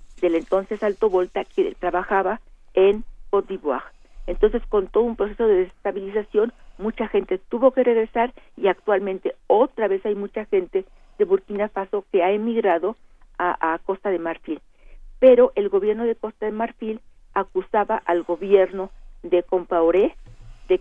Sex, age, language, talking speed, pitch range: female, 50-69, Spanish, 150 wpm, 185-230 Hz